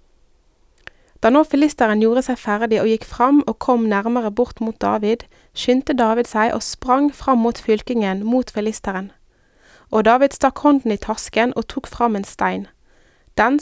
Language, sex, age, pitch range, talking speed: Danish, female, 20-39, 215-255 Hz, 160 wpm